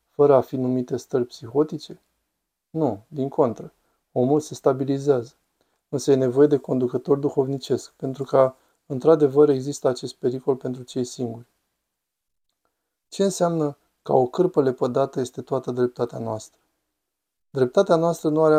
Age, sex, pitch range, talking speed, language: 20-39, male, 125-150 Hz, 130 wpm, Romanian